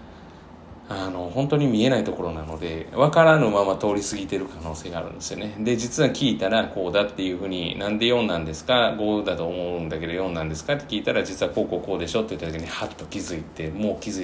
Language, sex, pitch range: Japanese, male, 80-110 Hz